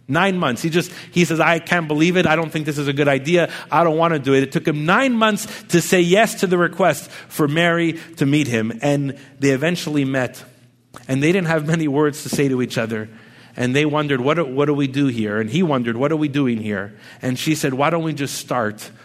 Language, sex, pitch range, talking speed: English, male, 120-155 Hz, 255 wpm